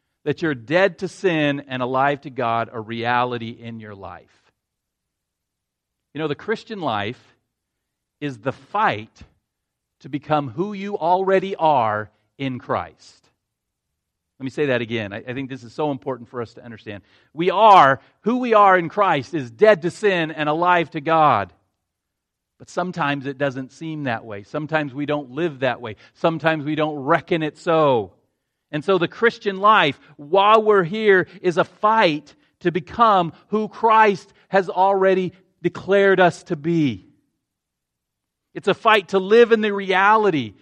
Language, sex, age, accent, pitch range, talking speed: English, male, 40-59, American, 125-185 Hz, 160 wpm